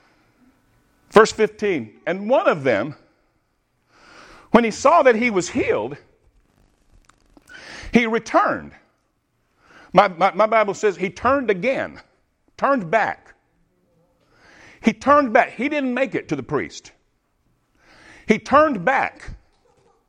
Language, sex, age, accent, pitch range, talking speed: English, male, 60-79, American, 175-230 Hz, 115 wpm